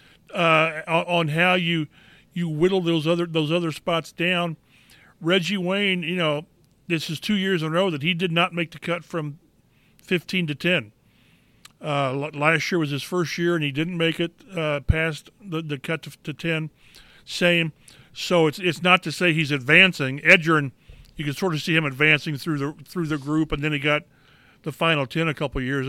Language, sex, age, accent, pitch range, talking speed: English, male, 40-59, American, 150-180 Hz, 200 wpm